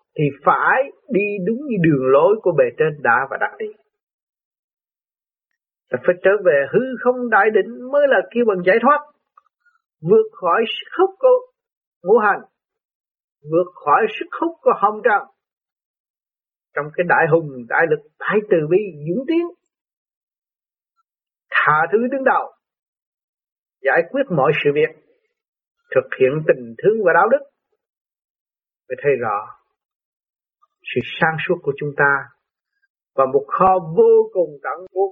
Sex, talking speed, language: male, 145 wpm, Vietnamese